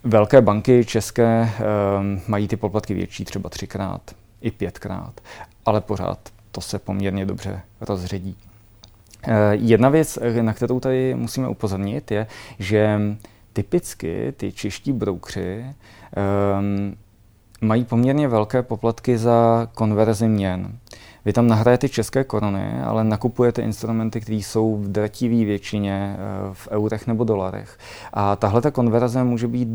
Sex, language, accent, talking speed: male, Czech, native, 130 wpm